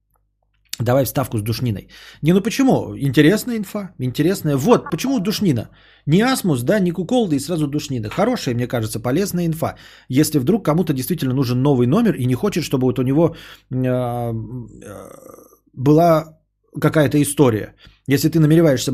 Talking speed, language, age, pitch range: 150 wpm, Bulgarian, 20-39, 115-155 Hz